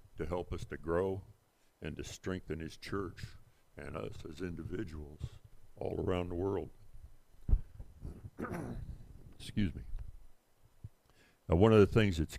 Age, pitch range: 60-79, 80-105 Hz